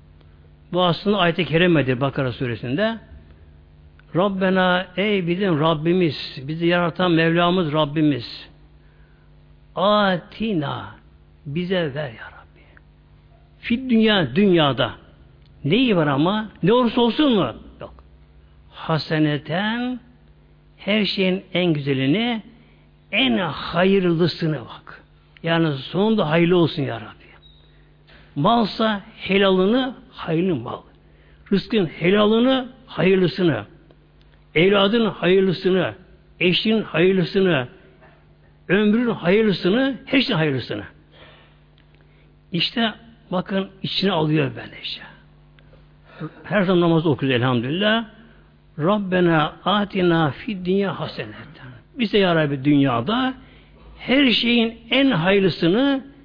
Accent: native